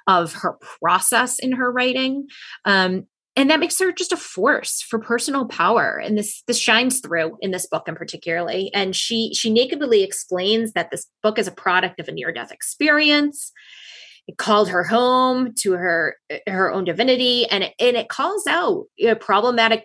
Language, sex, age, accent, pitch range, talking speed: English, female, 20-39, American, 185-245 Hz, 185 wpm